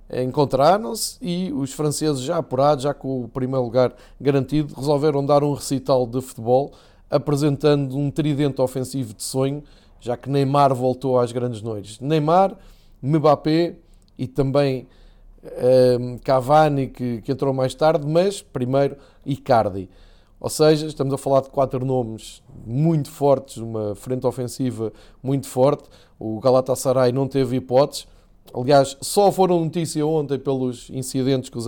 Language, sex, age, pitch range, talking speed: Portuguese, male, 20-39, 125-150 Hz, 140 wpm